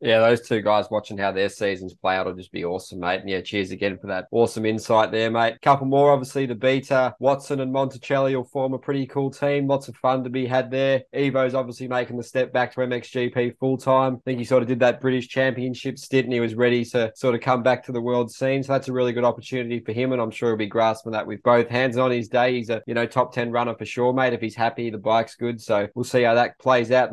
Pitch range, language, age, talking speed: 115-130 Hz, English, 20-39, 270 wpm